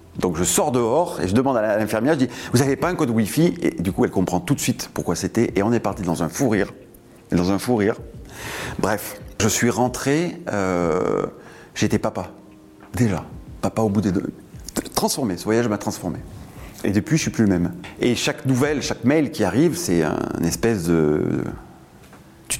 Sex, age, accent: male, 40-59, French